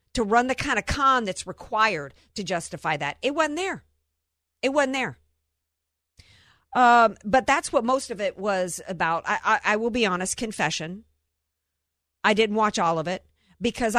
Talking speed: 170 wpm